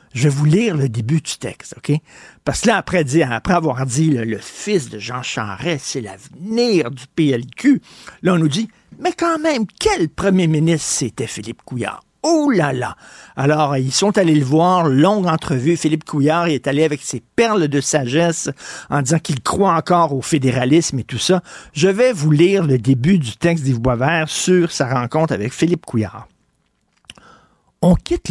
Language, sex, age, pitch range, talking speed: French, male, 50-69, 135-190 Hz, 190 wpm